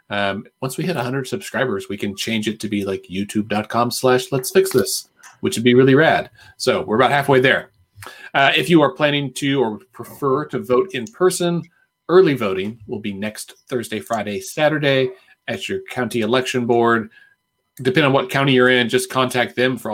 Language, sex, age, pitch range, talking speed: English, male, 40-59, 120-155 Hz, 190 wpm